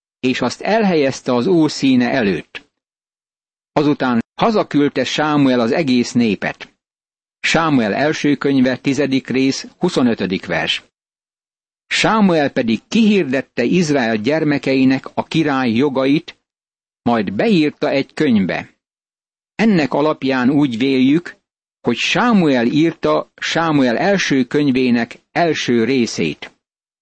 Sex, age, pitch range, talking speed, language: male, 60-79, 125-170 Hz, 95 wpm, Hungarian